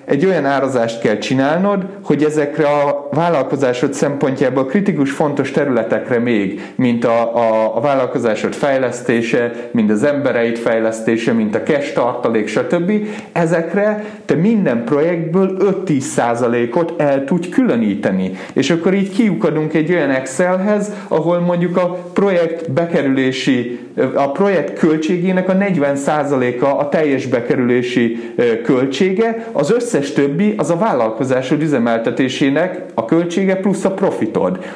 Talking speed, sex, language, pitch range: 125 wpm, male, Hungarian, 135-185 Hz